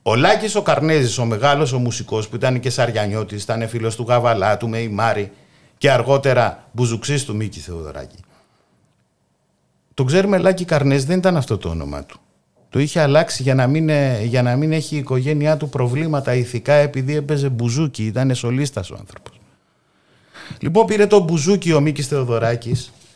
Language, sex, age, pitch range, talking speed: Greek, male, 50-69, 120-160 Hz, 160 wpm